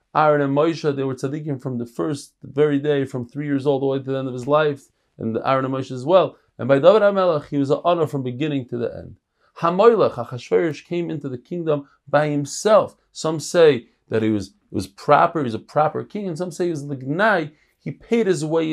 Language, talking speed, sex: English, 235 wpm, male